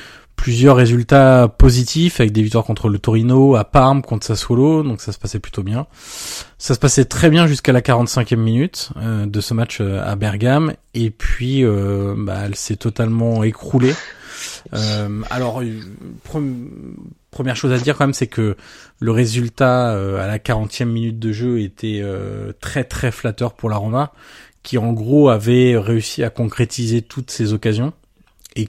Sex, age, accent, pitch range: male, 20-39, French, 110-130 Hz